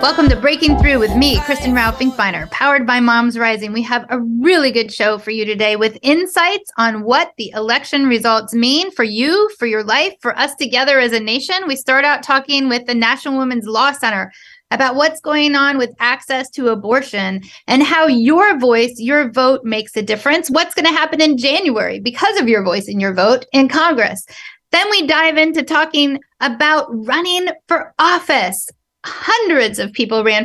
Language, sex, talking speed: English, female, 185 wpm